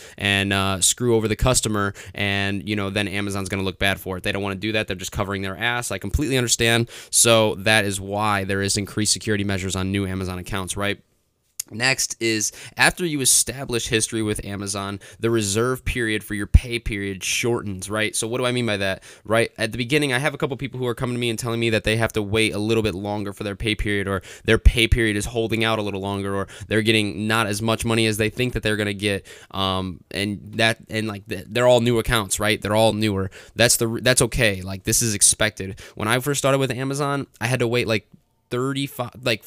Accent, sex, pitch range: American, male, 100-115 Hz